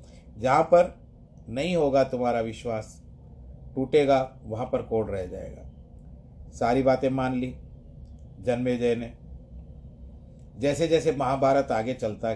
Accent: native